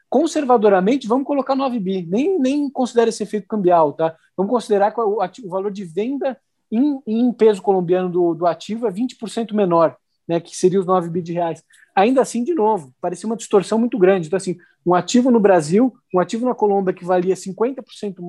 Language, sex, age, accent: Portuguese, male, 20-39, Brazilian